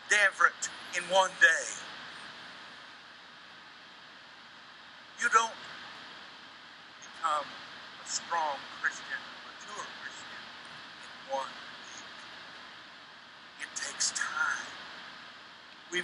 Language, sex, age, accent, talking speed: English, male, 60-79, American, 70 wpm